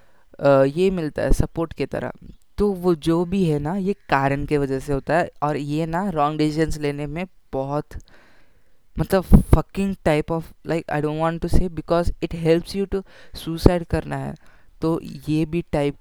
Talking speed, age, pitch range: 185 wpm, 20-39, 145-185 Hz